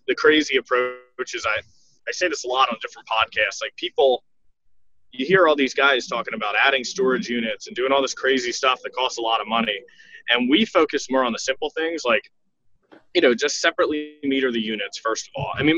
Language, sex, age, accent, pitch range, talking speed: English, male, 20-39, American, 115-180 Hz, 225 wpm